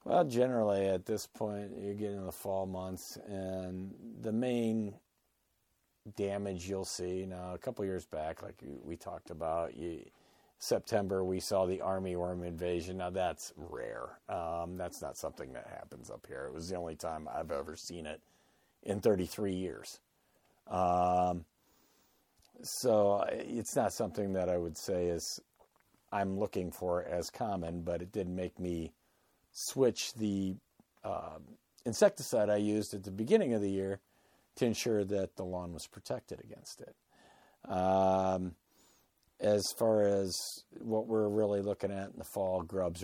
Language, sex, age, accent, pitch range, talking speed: English, male, 50-69, American, 90-100 Hz, 160 wpm